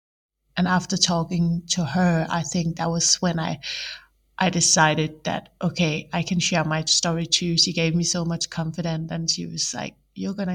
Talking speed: 190 wpm